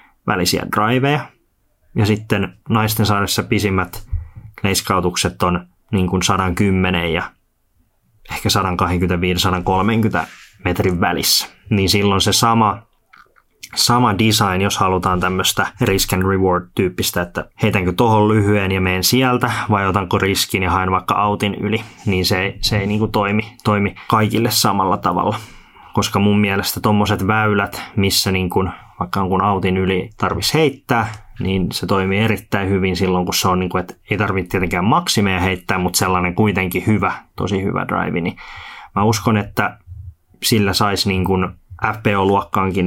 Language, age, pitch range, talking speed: Finnish, 20-39, 95-110 Hz, 145 wpm